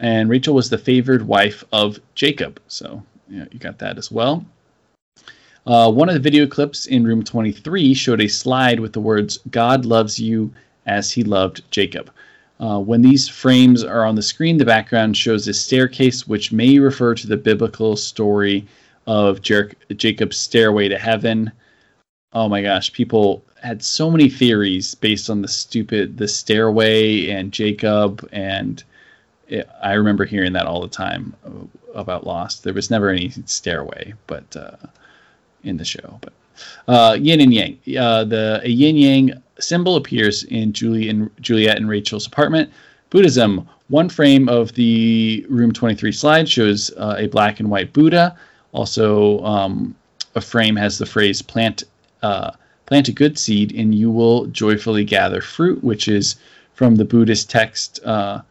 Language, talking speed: English, 165 wpm